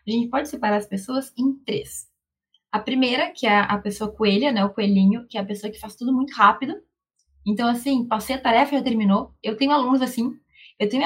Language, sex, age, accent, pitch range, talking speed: Portuguese, female, 20-39, Brazilian, 210-265 Hz, 220 wpm